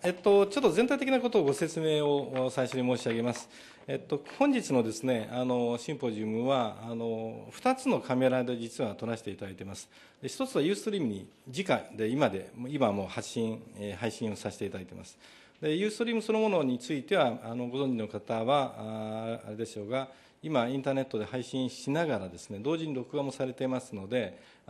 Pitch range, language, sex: 115-150 Hz, Japanese, male